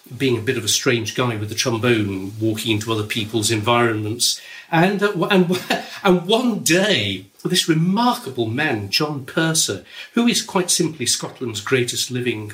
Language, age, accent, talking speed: English, 50-69, British, 160 wpm